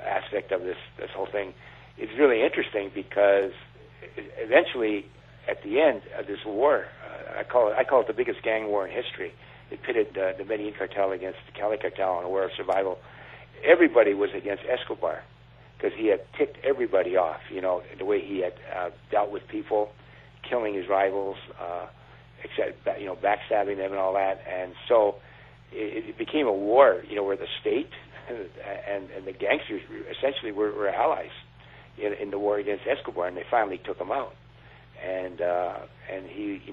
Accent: American